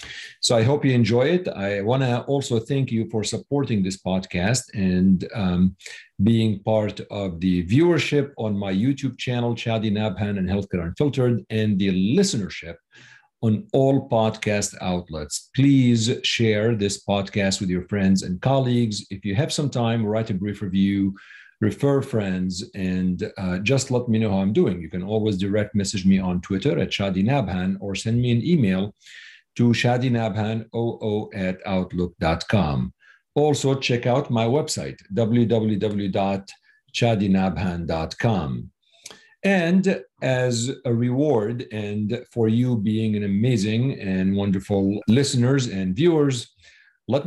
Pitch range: 95-125 Hz